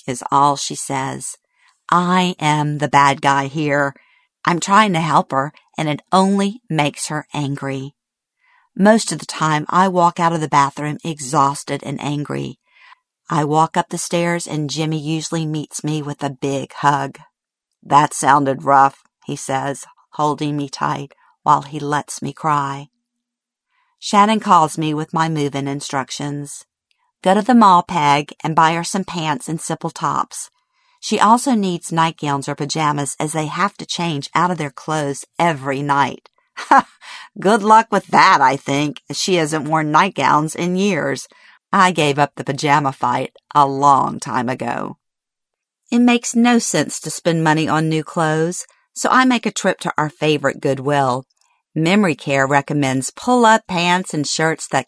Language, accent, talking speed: English, American, 160 wpm